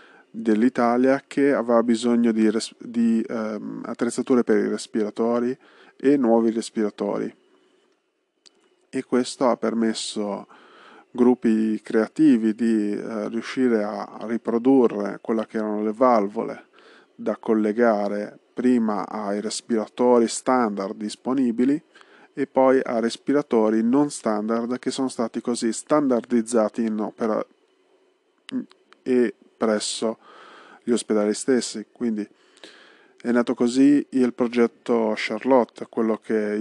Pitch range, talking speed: 110-125 Hz, 105 wpm